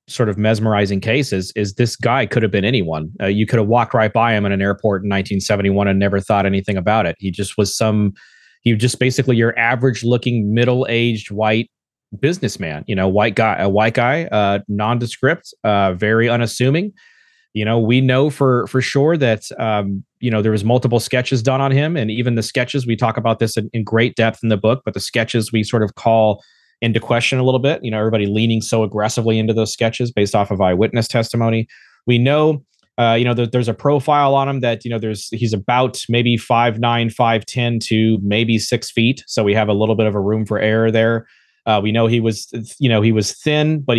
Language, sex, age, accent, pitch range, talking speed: English, male, 30-49, American, 110-125 Hz, 225 wpm